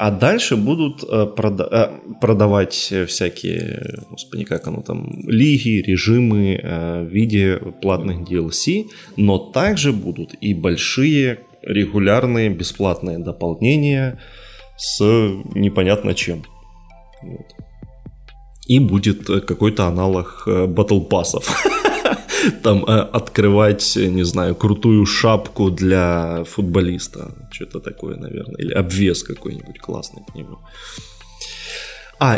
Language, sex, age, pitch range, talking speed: Ukrainian, male, 20-39, 90-115 Hz, 95 wpm